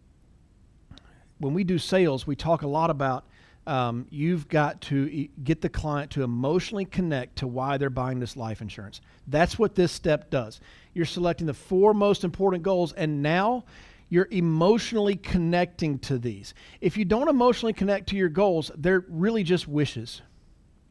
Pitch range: 145-205 Hz